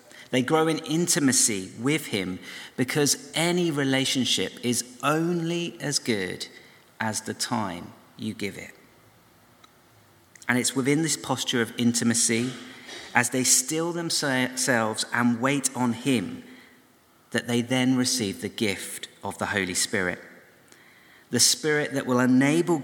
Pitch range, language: 115-140 Hz, English